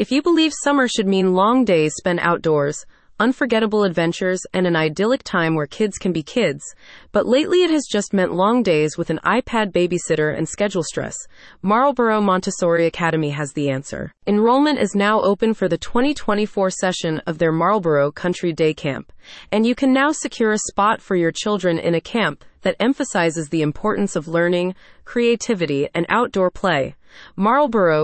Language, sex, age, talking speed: English, female, 30-49, 170 wpm